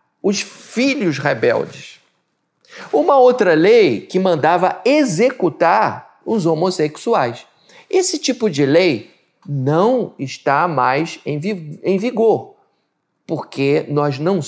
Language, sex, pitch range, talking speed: Portuguese, male, 150-210 Hz, 95 wpm